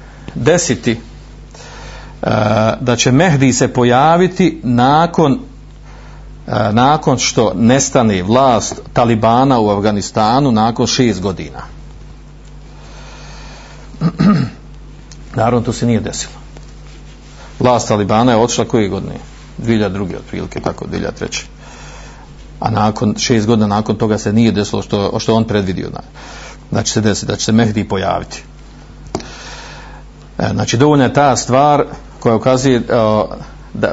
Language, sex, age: Croatian, male, 50-69